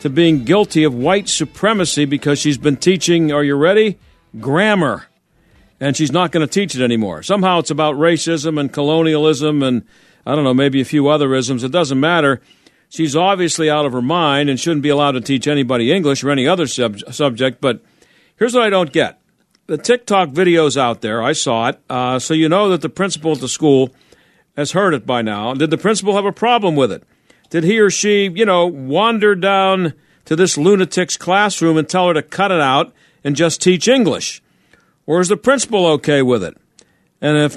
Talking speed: 205 wpm